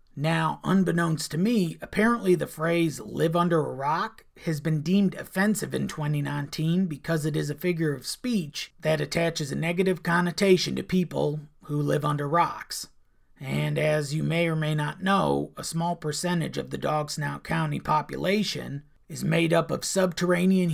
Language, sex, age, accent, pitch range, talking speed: English, male, 40-59, American, 150-180 Hz, 165 wpm